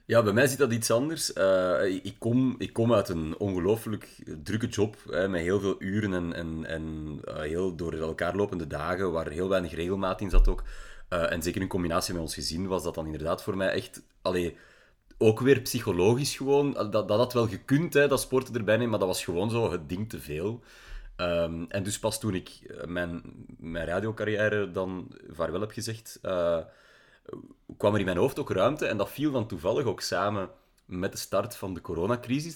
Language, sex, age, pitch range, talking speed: Dutch, male, 30-49, 85-110 Hz, 205 wpm